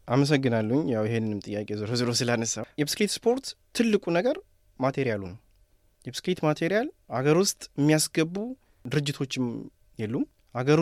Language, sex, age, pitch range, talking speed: Amharic, male, 20-39, 120-155 Hz, 115 wpm